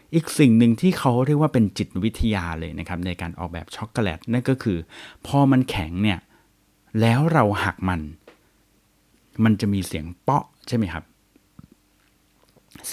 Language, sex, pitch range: Thai, male, 95-130 Hz